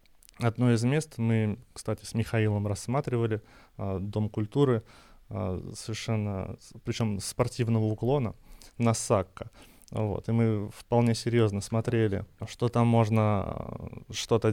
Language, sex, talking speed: Russian, male, 105 wpm